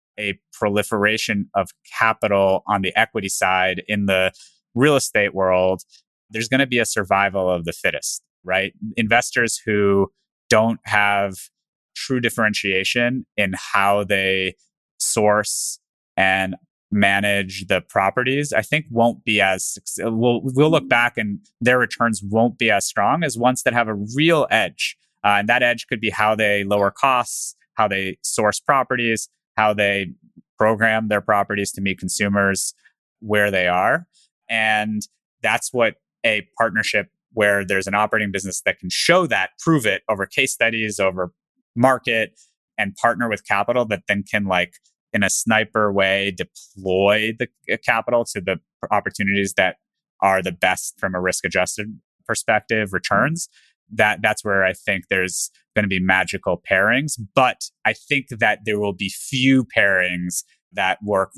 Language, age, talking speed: English, 20-39, 150 wpm